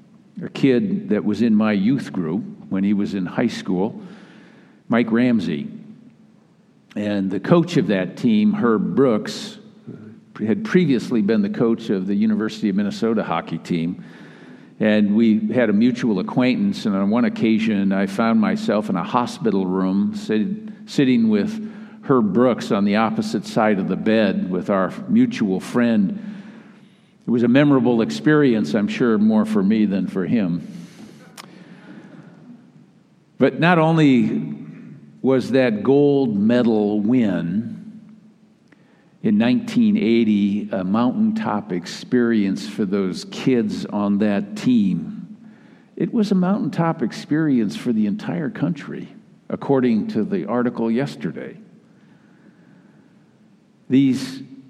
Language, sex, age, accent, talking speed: English, male, 50-69, American, 125 wpm